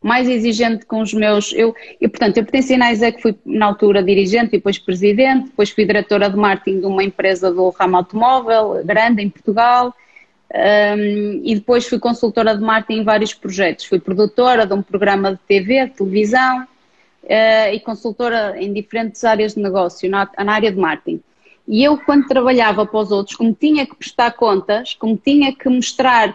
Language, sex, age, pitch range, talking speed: Portuguese, female, 20-39, 215-260 Hz, 180 wpm